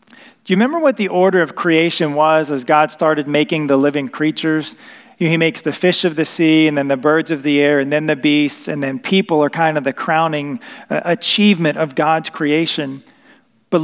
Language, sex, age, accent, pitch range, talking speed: English, male, 40-59, American, 150-215 Hz, 210 wpm